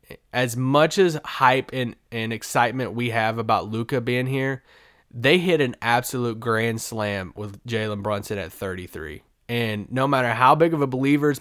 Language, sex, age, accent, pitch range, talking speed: English, male, 20-39, American, 115-145 Hz, 170 wpm